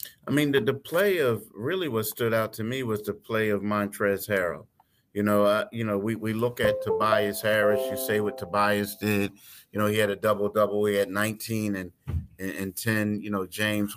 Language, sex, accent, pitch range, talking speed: English, male, American, 105-120 Hz, 215 wpm